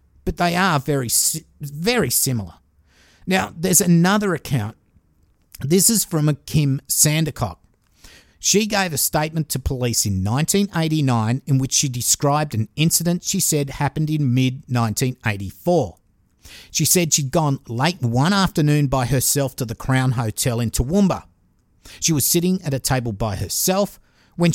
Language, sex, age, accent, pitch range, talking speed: English, male, 50-69, Australian, 110-160 Hz, 145 wpm